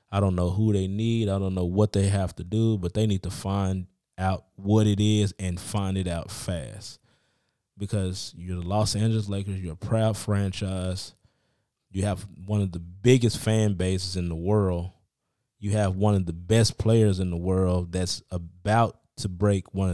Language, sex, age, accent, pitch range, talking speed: English, male, 20-39, American, 95-115 Hz, 195 wpm